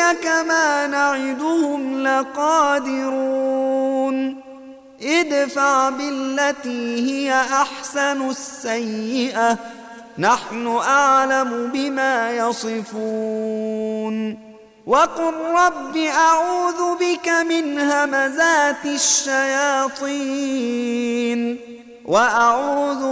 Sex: male